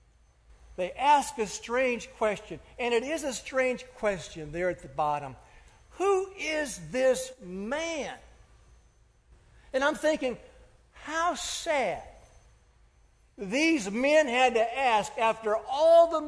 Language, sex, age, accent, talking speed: English, male, 60-79, American, 120 wpm